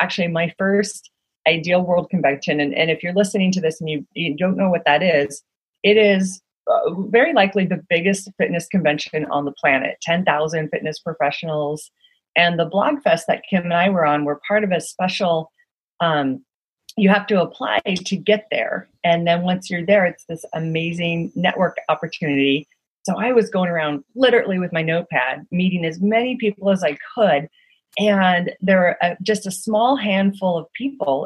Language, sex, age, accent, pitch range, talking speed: English, female, 40-59, American, 160-205 Hz, 180 wpm